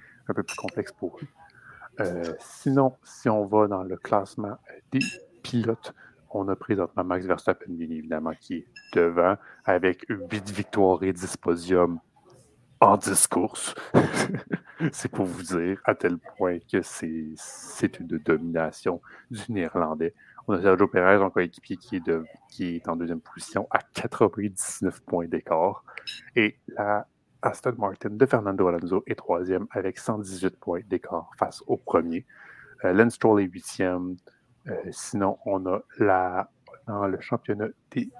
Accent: French